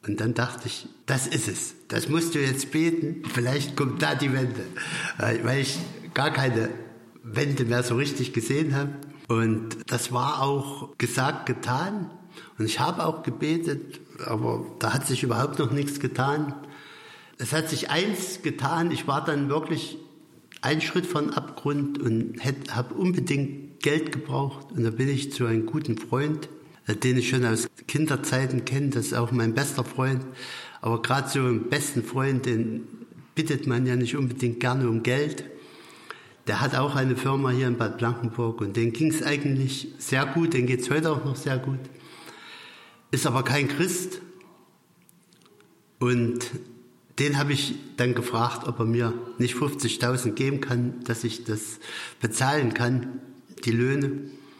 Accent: German